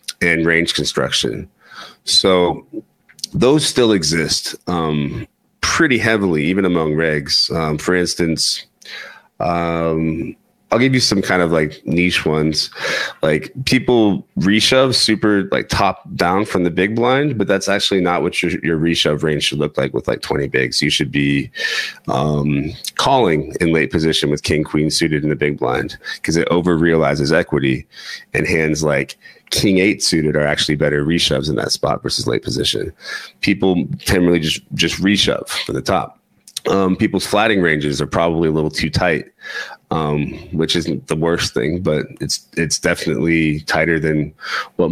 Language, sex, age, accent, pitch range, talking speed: English, male, 30-49, American, 75-95 Hz, 165 wpm